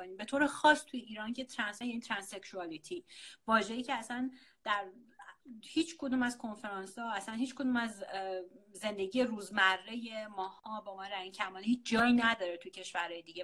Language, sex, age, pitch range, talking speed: English, female, 30-49, 205-265 Hz, 165 wpm